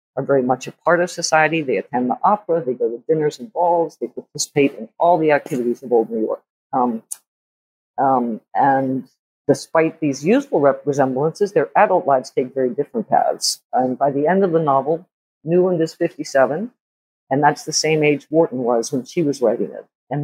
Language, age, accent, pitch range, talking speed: English, 50-69, American, 125-160 Hz, 190 wpm